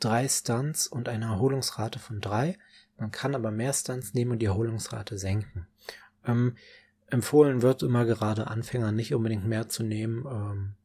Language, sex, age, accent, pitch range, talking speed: German, male, 20-39, German, 105-125 Hz, 160 wpm